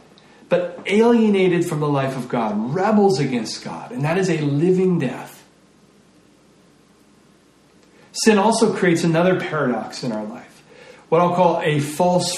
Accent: American